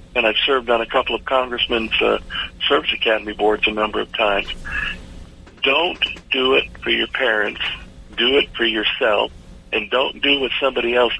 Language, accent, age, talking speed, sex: English, American, 60-79, 170 wpm, male